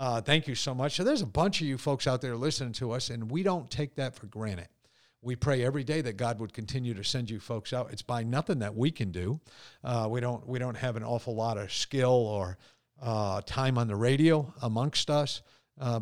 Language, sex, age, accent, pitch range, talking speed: English, male, 50-69, American, 110-140 Hz, 240 wpm